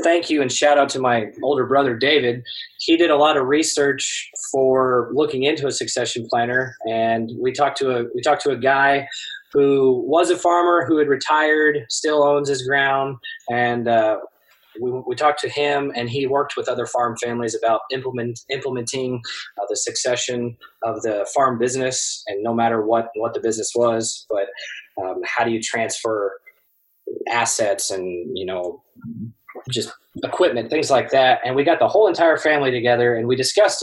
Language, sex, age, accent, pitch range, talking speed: English, male, 20-39, American, 120-145 Hz, 180 wpm